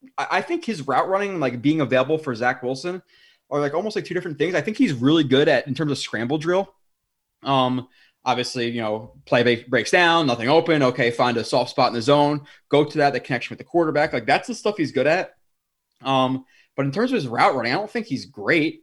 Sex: male